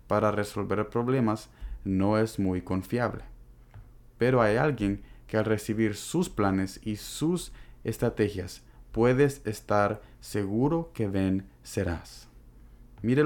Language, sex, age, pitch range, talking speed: Spanish, male, 30-49, 100-120 Hz, 115 wpm